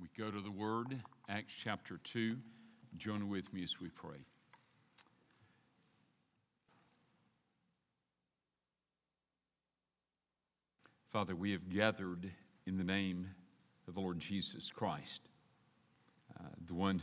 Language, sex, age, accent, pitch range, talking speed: English, male, 50-69, American, 85-105 Hz, 100 wpm